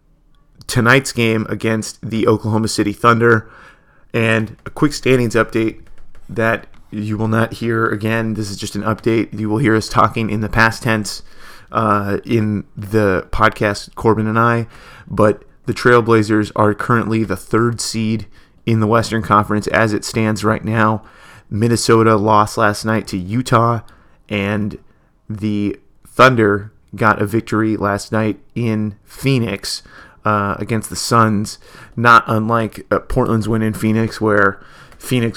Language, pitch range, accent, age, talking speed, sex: English, 105-115 Hz, American, 30-49, 145 wpm, male